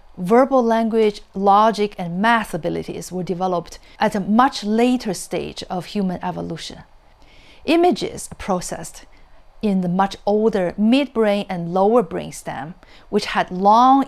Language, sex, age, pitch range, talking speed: English, female, 40-59, 185-230 Hz, 125 wpm